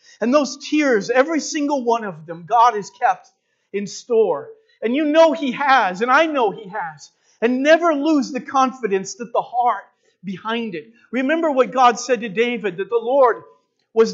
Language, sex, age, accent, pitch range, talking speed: English, male, 50-69, American, 225-275 Hz, 185 wpm